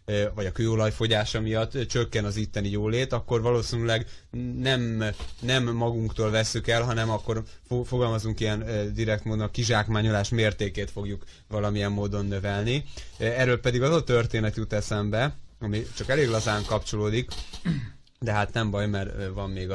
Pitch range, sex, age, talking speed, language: 95-115 Hz, male, 20-39, 145 wpm, Hungarian